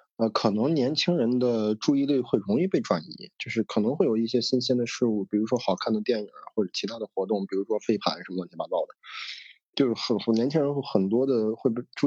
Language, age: Chinese, 20-39